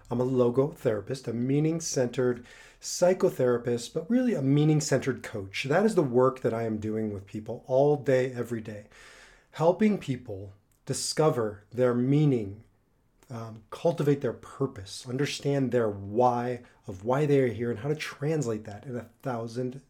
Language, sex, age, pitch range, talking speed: English, male, 30-49, 115-145 Hz, 155 wpm